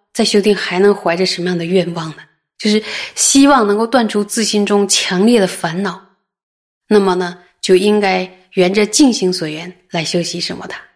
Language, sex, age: Chinese, female, 20-39